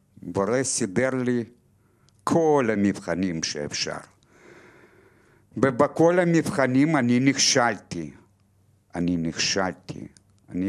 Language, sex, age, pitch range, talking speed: Hebrew, male, 60-79, 100-145 Hz, 75 wpm